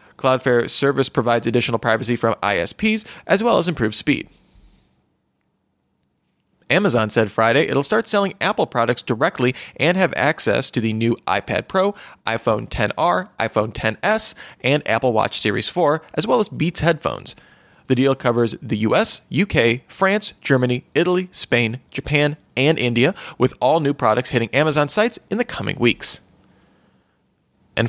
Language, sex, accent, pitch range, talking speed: English, male, American, 115-155 Hz, 145 wpm